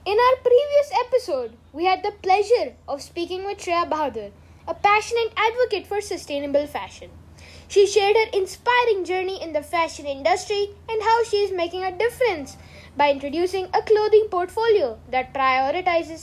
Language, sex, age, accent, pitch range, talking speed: English, female, 20-39, Indian, 285-405 Hz, 155 wpm